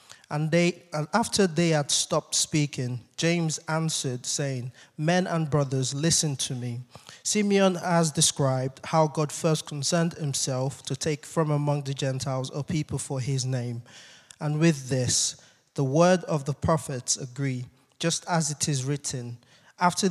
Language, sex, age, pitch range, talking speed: English, male, 20-39, 135-160 Hz, 150 wpm